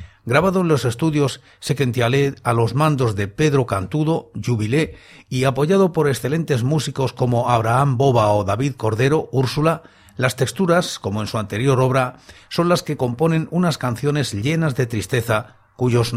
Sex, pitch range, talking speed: male, 115-140 Hz, 150 wpm